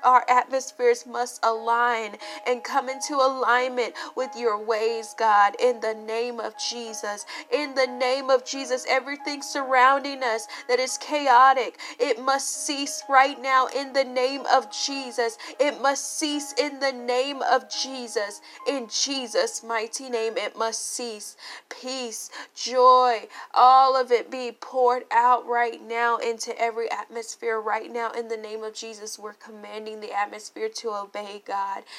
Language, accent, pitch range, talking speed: English, American, 220-260 Hz, 150 wpm